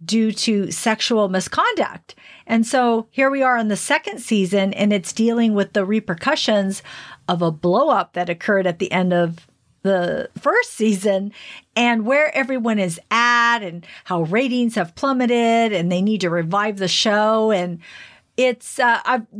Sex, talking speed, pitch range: female, 165 wpm, 190-235 Hz